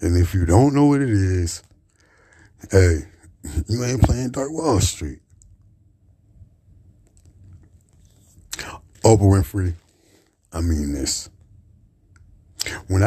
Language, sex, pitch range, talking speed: Czech, male, 80-100 Hz, 95 wpm